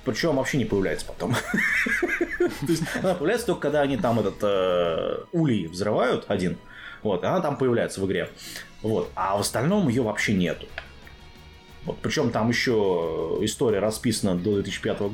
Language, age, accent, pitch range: Russian, 20-39, native, 75-125 Hz